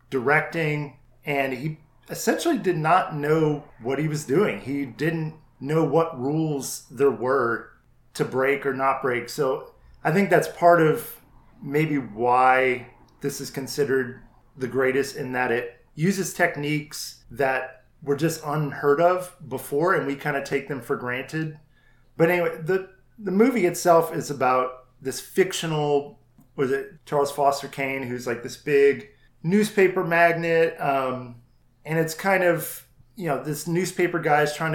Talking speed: 150 wpm